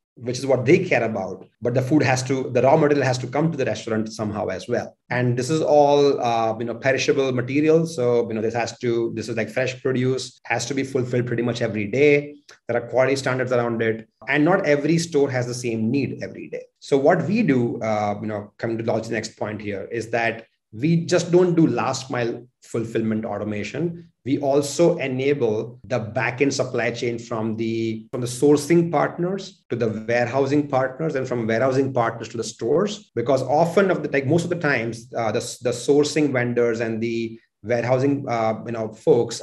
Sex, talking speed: male, 205 wpm